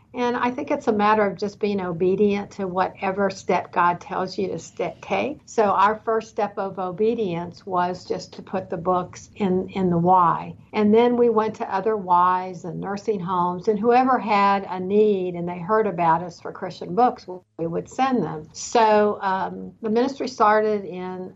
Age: 60-79